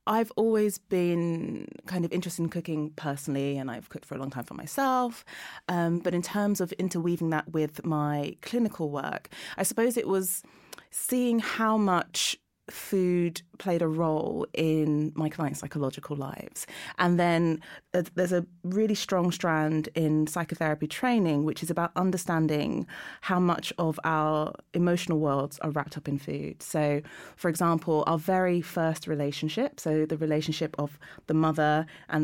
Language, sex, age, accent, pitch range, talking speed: English, female, 30-49, British, 150-180 Hz, 155 wpm